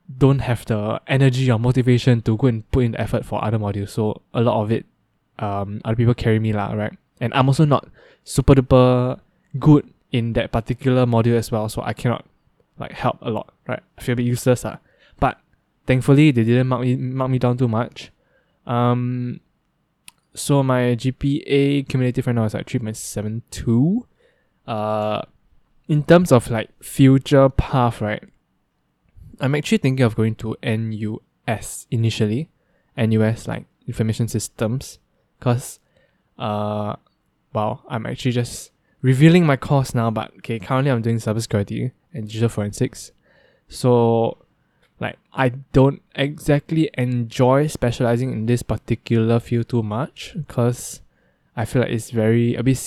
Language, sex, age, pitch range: English, male, 10-29, 110-135 Hz